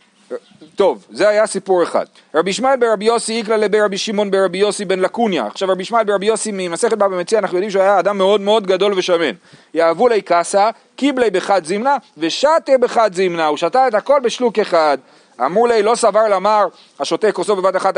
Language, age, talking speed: Hebrew, 40-59, 190 wpm